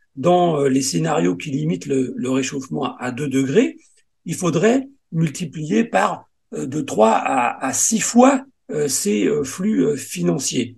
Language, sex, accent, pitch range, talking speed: French, male, French, 135-190 Hz, 135 wpm